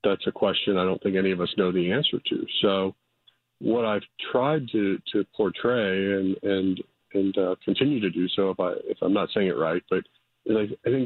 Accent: American